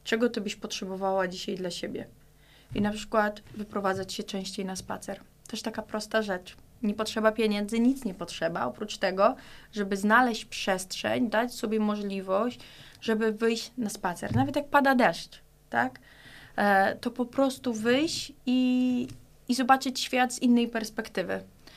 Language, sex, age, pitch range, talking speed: Polish, female, 20-39, 195-235 Hz, 150 wpm